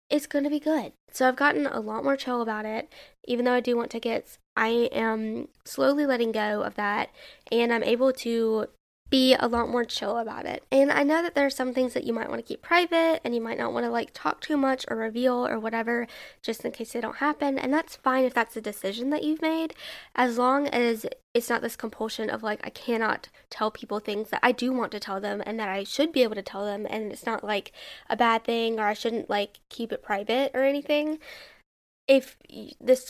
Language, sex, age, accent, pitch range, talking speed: English, female, 10-29, American, 225-275 Hz, 235 wpm